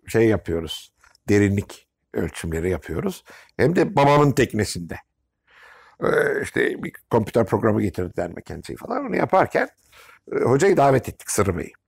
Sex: male